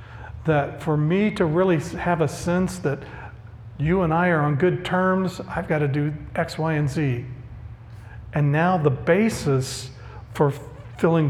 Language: English